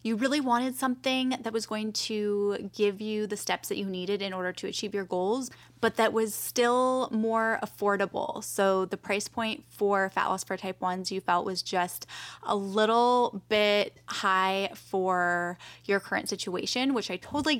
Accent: American